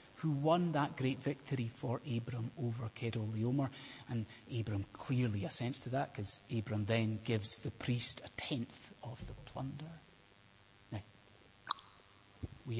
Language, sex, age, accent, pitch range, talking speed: English, male, 30-49, British, 115-185 Hz, 135 wpm